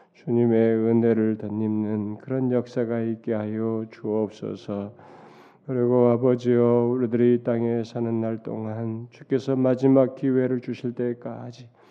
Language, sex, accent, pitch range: Korean, male, native, 115-130 Hz